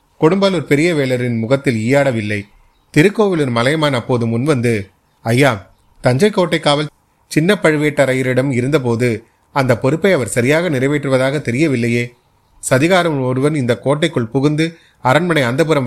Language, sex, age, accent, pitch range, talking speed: Tamil, male, 30-49, native, 120-150 Hz, 110 wpm